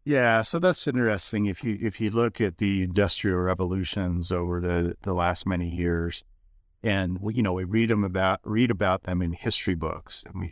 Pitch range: 85-100 Hz